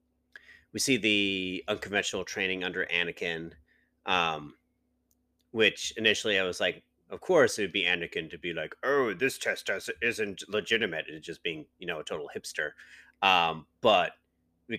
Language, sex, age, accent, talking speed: English, male, 30-49, American, 160 wpm